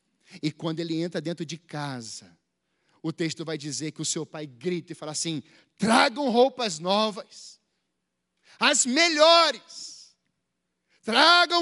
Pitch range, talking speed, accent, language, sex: 270-340 Hz, 130 wpm, Brazilian, Portuguese, male